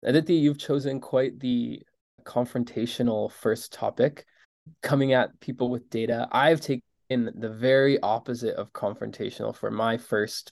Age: 20-39